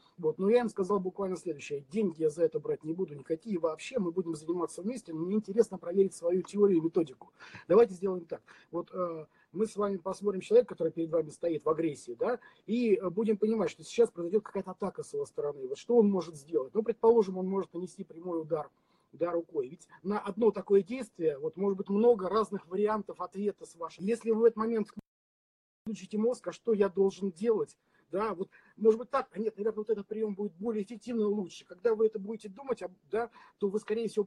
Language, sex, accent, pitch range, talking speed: Russian, male, native, 170-220 Hz, 210 wpm